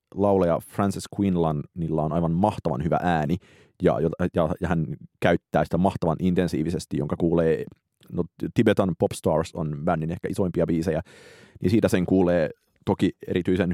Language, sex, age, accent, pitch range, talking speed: Finnish, male, 30-49, native, 85-105 Hz, 135 wpm